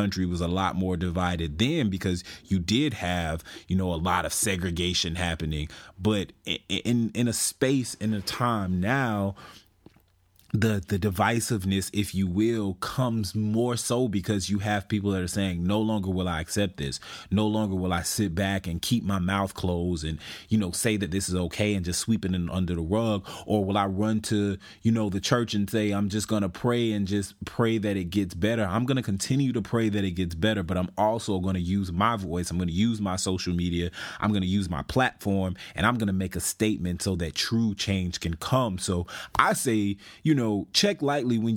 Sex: male